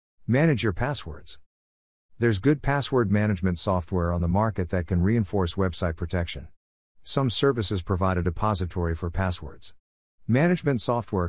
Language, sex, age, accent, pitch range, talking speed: English, male, 50-69, American, 85-110 Hz, 135 wpm